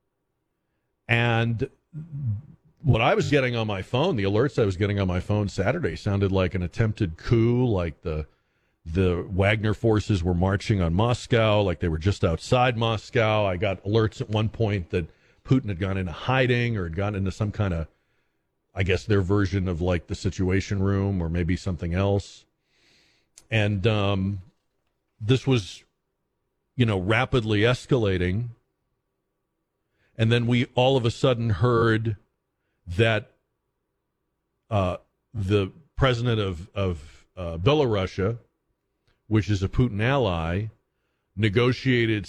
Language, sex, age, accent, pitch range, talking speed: English, male, 40-59, American, 95-120 Hz, 140 wpm